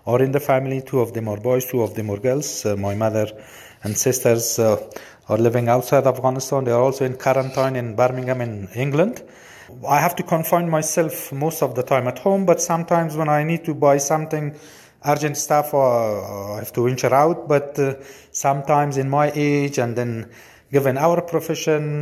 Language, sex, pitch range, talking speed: English, male, 120-145 Hz, 195 wpm